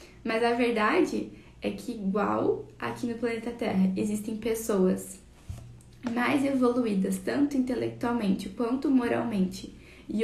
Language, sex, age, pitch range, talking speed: Portuguese, female, 10-29, 200-250 Hz, 110 wpm